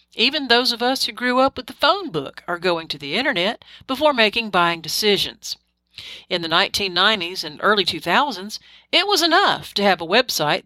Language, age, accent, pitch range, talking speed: English, 50-69, American, 165-240 Hz, 185 wpm